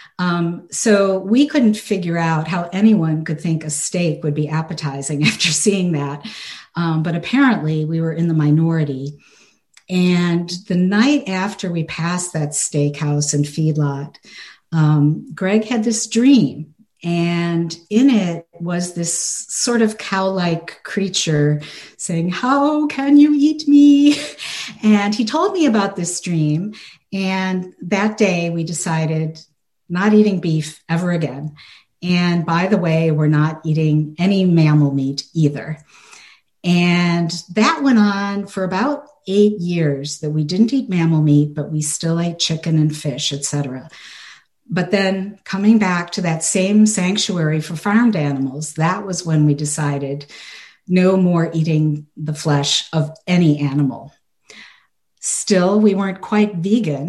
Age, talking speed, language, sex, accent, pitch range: 50-69, 140 wpm, English, female, American, 155-200 Hz